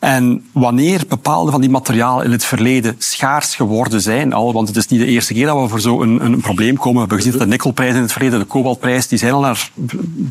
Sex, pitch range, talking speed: male, 115-140 Hz, 255 wpm